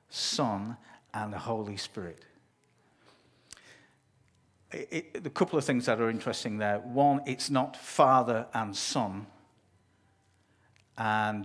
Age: 50-69